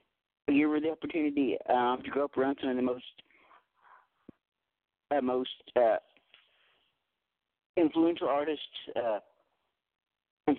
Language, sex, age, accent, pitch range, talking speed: English, male, 50-69, American, 130-155 Hz, 115 wpm